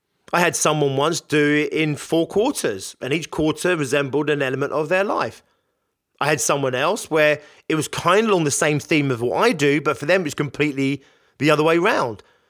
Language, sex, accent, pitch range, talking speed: English, male, British, 140-190 Hz, 215 wpm